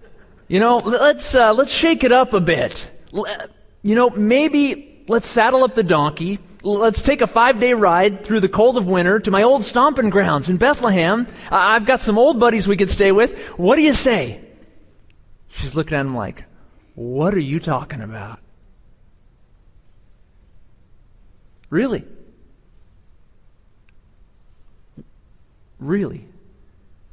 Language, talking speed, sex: English, 135 wpm, male